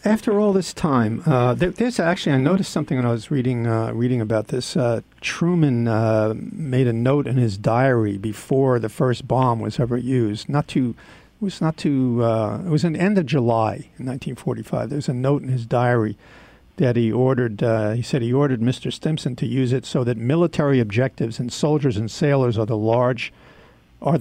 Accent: American